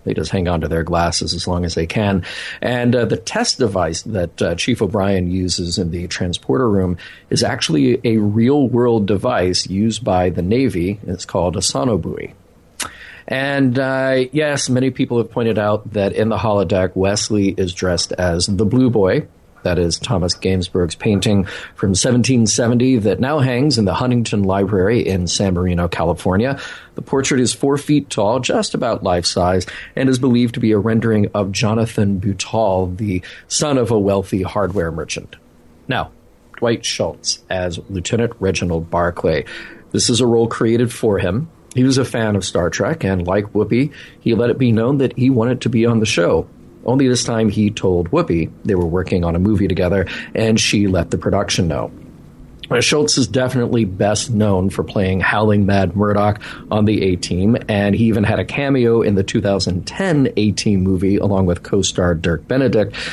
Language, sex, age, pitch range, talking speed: English, male, 40-59, 95-120 Hz, 180 wpm